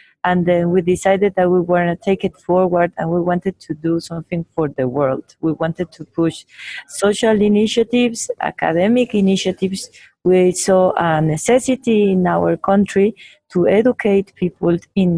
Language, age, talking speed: English, 30-49, 155 wpm